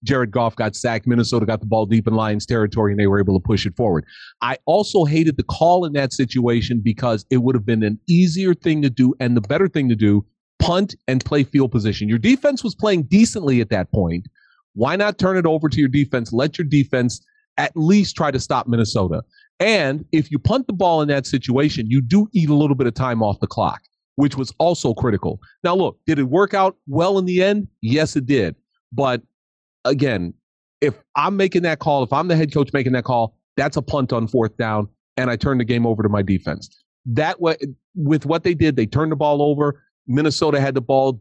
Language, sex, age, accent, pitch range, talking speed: English, male, 40-59, American, 115-155 Hz, 225 wpm